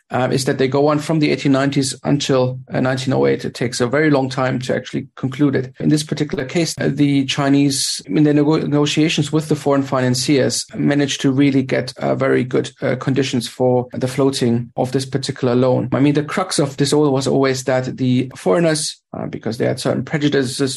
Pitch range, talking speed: 130-150 Hz, 205 wpm